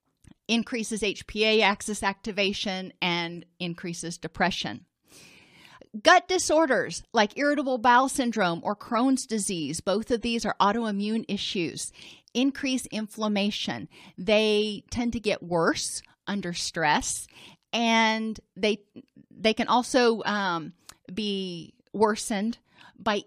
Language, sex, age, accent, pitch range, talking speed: English, female, 40-59, American, 190-240 Hz, 105 wpm